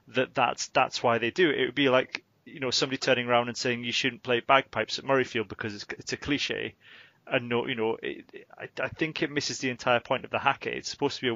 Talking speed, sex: 270 wpm, male